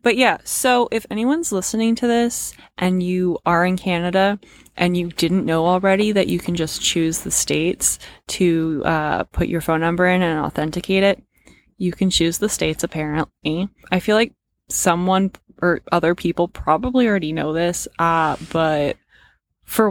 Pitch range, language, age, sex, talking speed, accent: 170-210 Hz, English, 20-39, female, 165 wpm, American